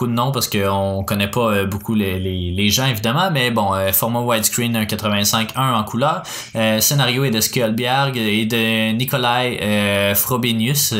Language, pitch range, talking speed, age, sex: French, 105-135 Hz, 165 wpm, 20-39, male